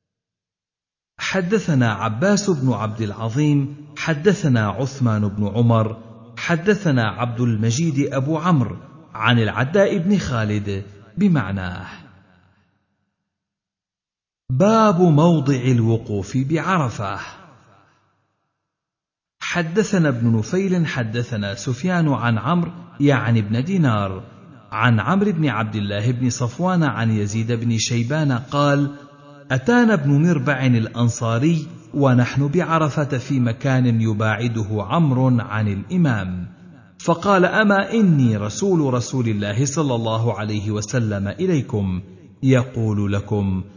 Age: 50-69